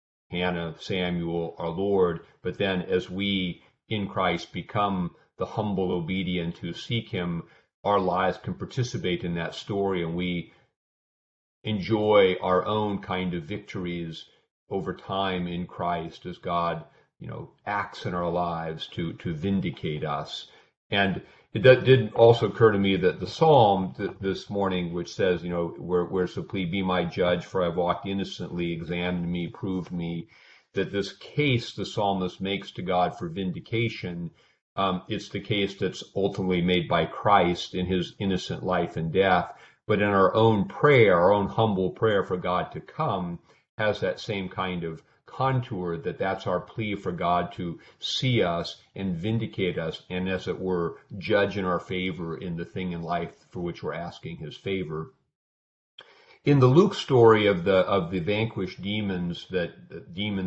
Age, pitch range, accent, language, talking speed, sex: 40-59, 85-100 Hz, American, English, 165 wpm, male